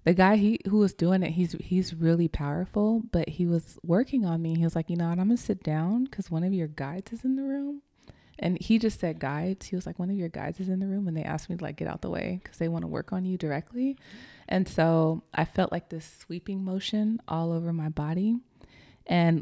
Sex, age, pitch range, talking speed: female, 20-39, 150-195 Hz, 260 wpm